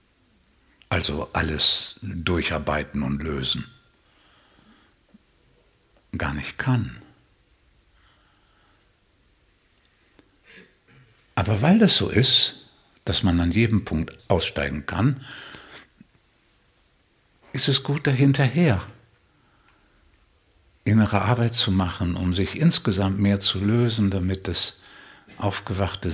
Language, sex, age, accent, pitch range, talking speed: German, male, 60-79, German, 90-120 Hz, 85 wpm